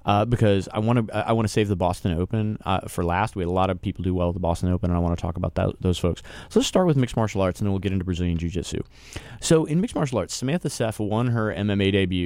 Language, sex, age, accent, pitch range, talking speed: English, male, 30-49, American, 90-110 Hz, 305 wpm